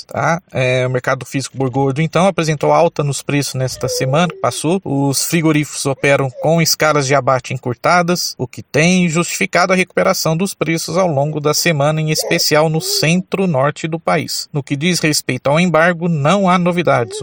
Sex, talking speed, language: male, 165 wpm, Portuguese